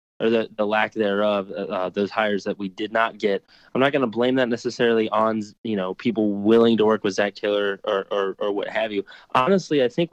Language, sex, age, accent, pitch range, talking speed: English, male, 20-39, American, 100-120 Hz, 230 wpm